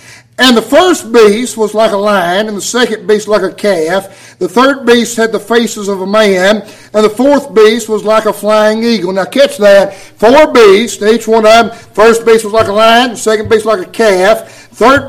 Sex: male